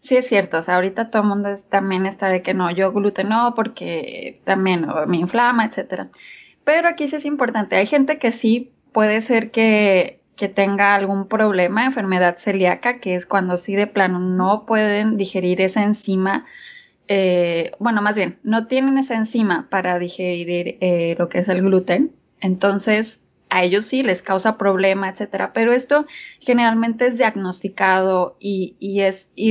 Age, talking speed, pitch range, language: 20-39, 170 wpm, 185-225 Hz, Spanish